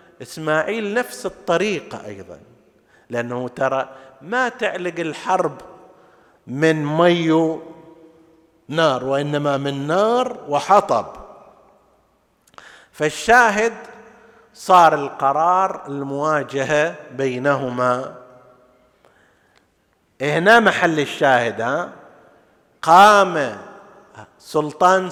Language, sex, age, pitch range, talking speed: Arabic, male, 50-69, 150-210 Hz, 60 wpm